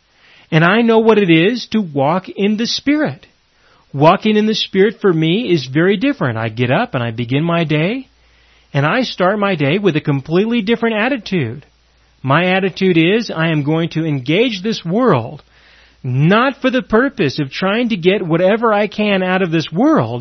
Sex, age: male, 40-59